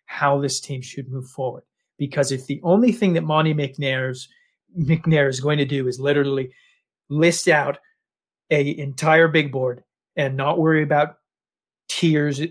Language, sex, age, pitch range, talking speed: English, male, 40-59, 140-170 Hz, 155 wpm